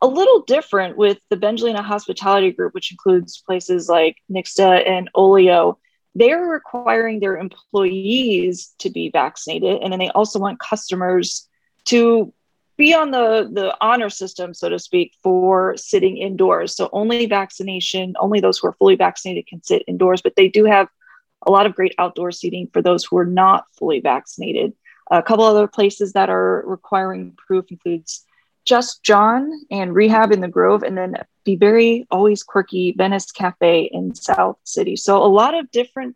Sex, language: female, English